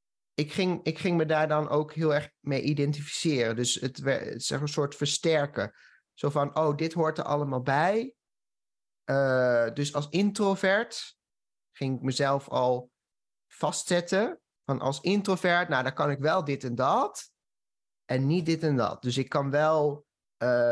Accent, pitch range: Dutch, 135-165 Hz